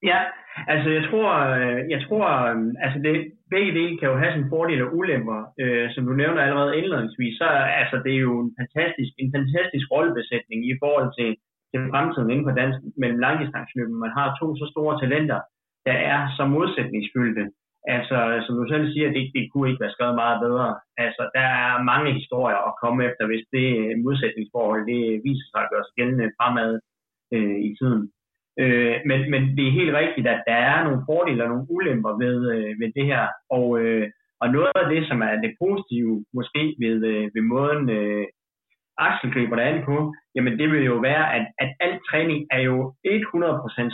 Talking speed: 185 wpm